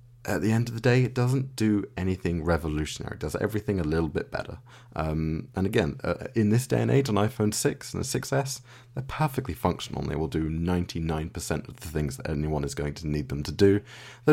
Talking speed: 225 wpm